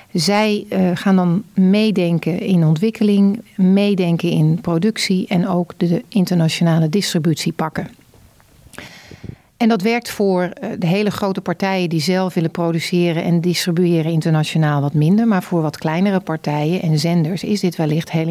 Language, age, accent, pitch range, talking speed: Dutch, 40-59, Dutch, 170-205 Hz, 150 wpm